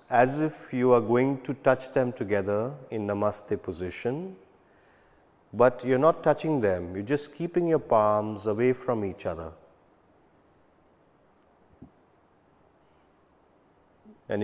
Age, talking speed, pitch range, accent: 30-49, 120 wpm, 110-145 Hz, Indian